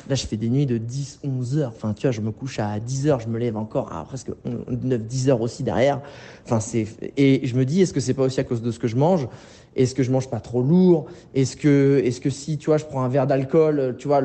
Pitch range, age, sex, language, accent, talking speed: 125-155 Hz, 20-39, male, French, French, 290 wpm